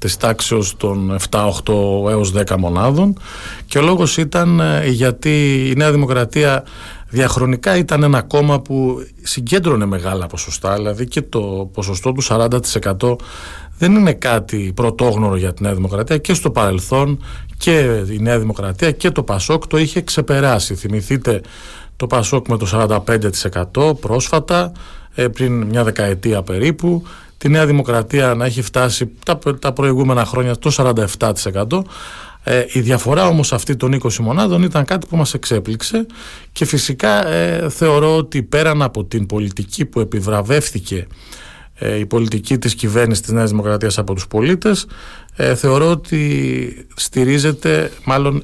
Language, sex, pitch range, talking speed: Greek, male, 105-145 Hz, 135 wpm